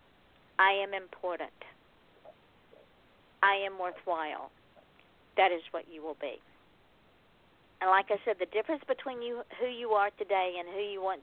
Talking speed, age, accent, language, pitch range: 145 wpm, 50-69, American, English, 170-210 Hz